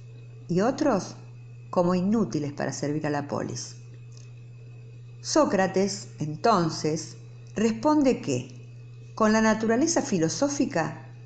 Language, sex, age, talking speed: Spanish, female, 50-69, 90 wpm